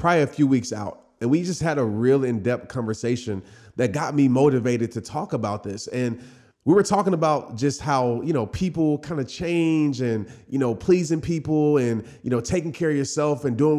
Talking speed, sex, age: 210 wpm, male, 30-49